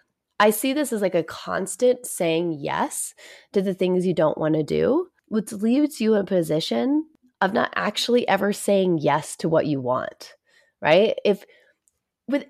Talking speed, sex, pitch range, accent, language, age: 175 wpm, female, 170-240 Hz, American, English, 30-49